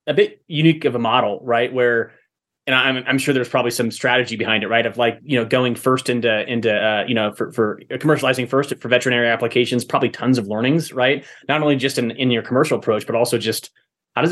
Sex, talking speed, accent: male, 230 wpm, American